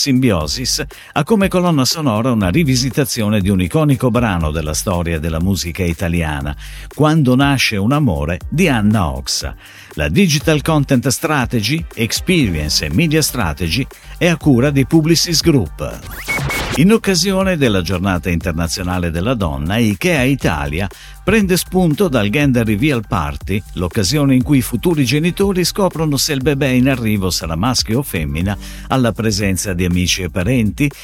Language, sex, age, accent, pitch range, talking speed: Italian, male, 50-69, native, 90-150 Hz, 145 wpm